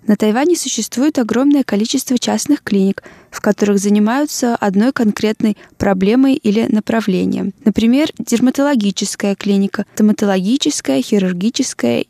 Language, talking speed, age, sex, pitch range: Russian, 100 wpm, 20-39, female, 190-230 Hz